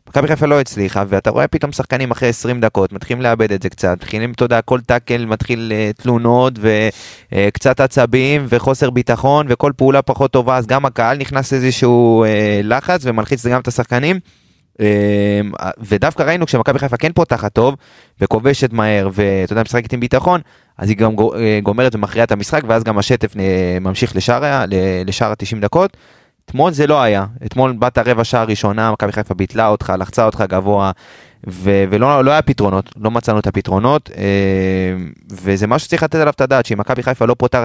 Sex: male